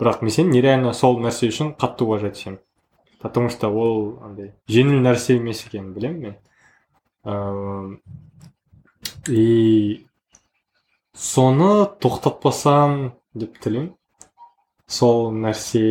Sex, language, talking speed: male, Russian, 55 wpm